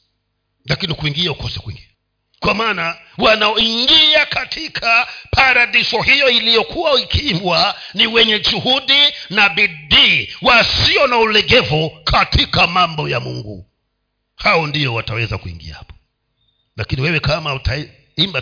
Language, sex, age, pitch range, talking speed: Swahili, male, 50-69, 110-160 Hz, 110 wpm